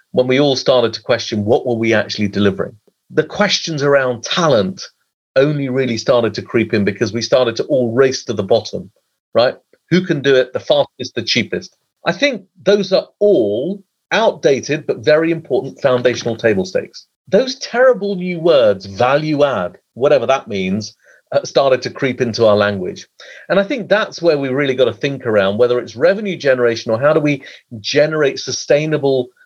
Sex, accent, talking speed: male, British, 175 wpm